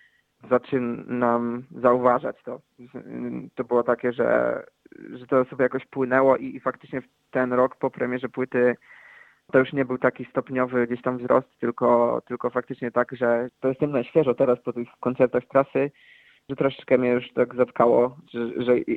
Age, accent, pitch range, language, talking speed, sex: 20-39, native, 120-130 Hz, Polish, 160 wpm, male